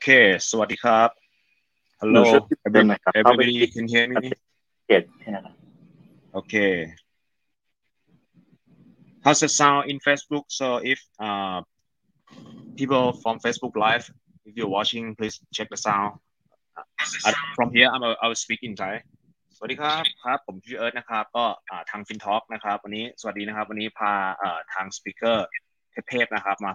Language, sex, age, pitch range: Thai, male, 20-39, 100-120 Hz